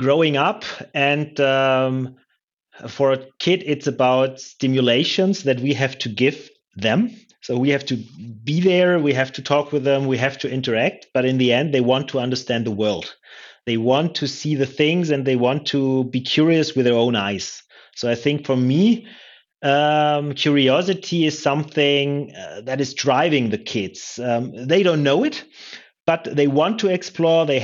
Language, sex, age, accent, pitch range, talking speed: English, male, 30-49, German, 130-165 Hz, 180 wpm